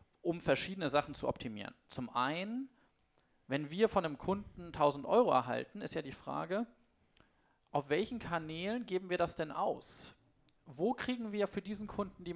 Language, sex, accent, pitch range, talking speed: German, male, German, 140-190 Hz, 165 wpm